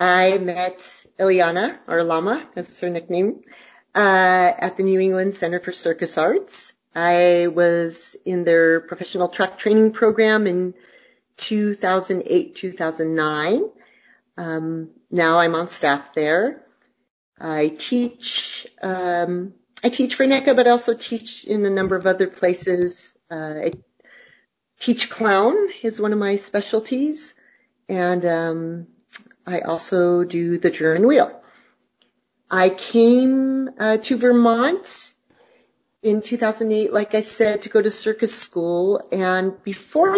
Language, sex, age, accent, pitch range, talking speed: English, female, 40-59, American, 175-225 Hz, 125 wpm